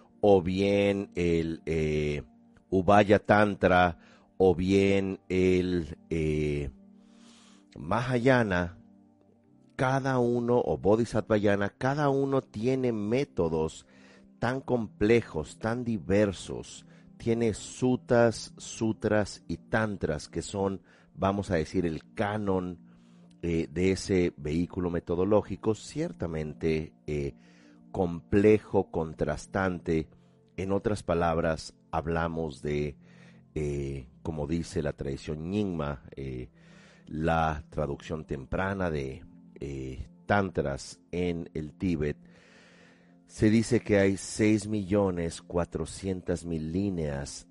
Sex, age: male, 40-59